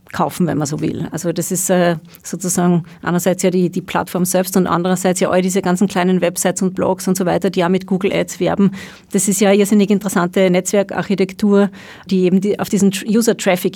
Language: German